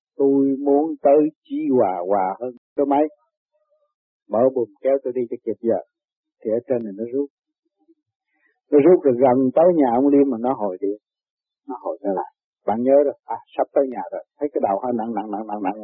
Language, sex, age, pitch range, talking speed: Vietnamese, male, 50-69, 125-175 Hz, 210 wpm